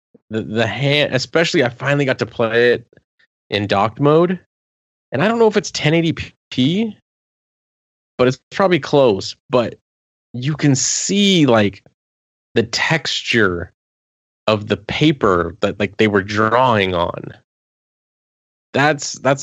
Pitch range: 95-130 Hz